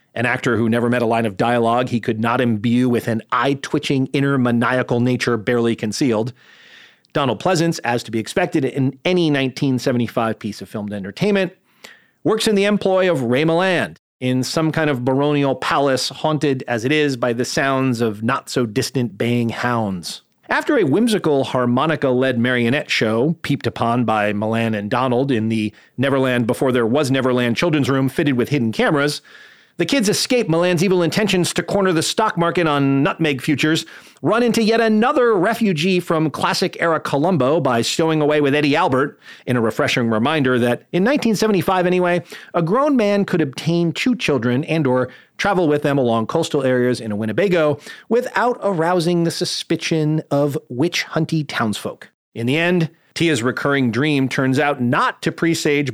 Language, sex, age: English, male, 40-59